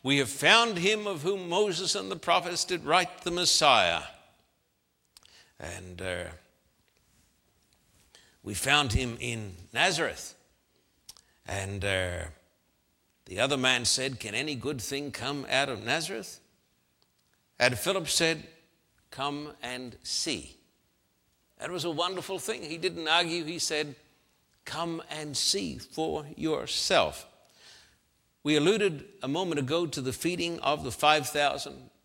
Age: 60-79